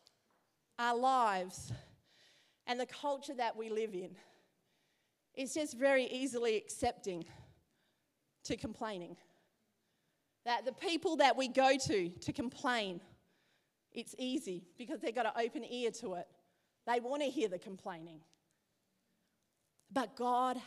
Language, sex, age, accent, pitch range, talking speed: English, female, 30-49, Australian, 205-265 Hz, 125 wpm